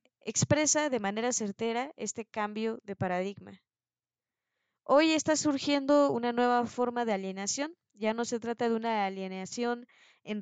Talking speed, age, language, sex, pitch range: 140 wpm, 20-39, Spanish, female, 205-250 Hz